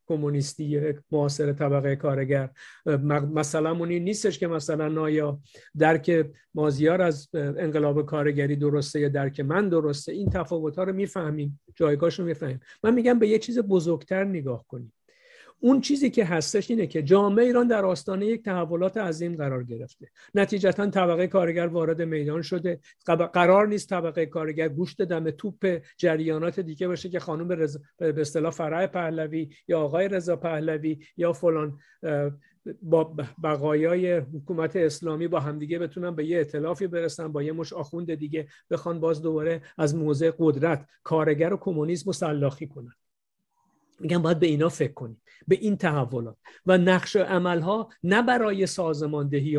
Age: 50-69